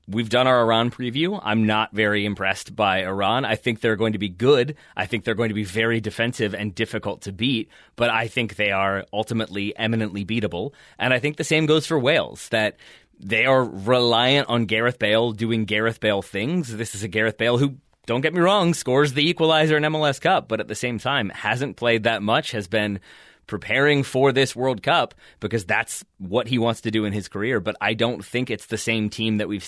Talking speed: 220 wpm